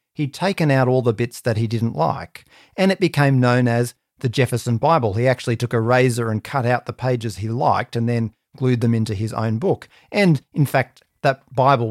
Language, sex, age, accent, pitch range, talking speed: English, male, 40-59, Australian, 115-145 Hz, 215 wpm